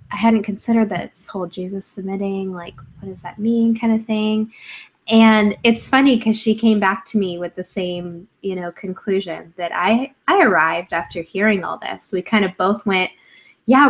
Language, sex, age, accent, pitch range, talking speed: English, female, 10-29, American, 175-220 Hz, 190 wpm